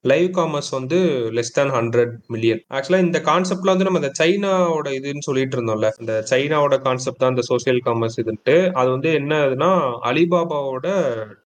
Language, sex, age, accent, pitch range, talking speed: Tamil, male, 30-49, native, 115-160 Hz, 150 wpm